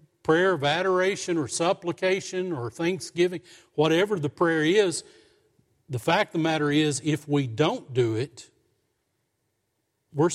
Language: English